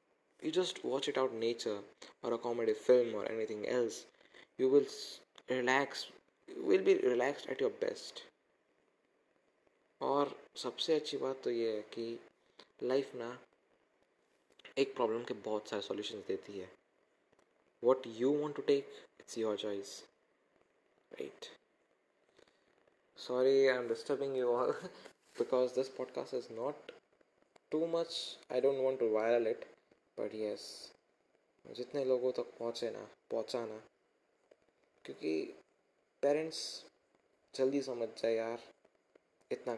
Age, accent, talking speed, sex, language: 20-39, native, 125 wpm, male, Hindi